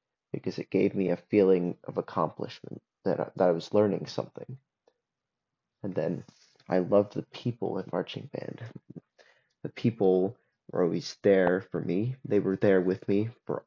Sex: male